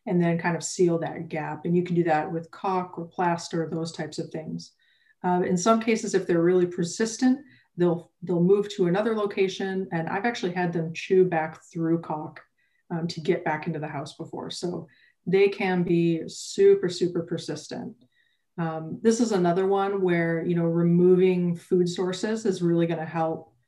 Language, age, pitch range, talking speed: English, 30-49, 170-185 Hz, 190 wpm